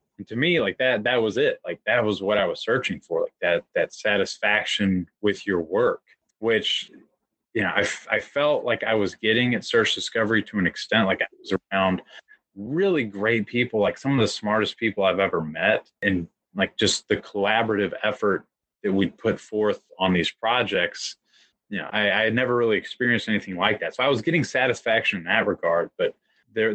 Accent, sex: American, male